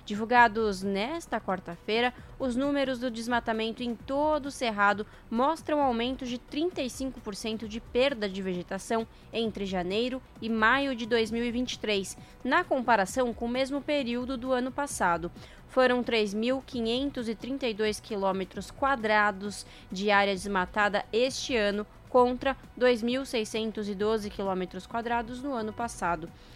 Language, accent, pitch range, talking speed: Portuguese, Brazilian, 210-255 Hz, 110 wpm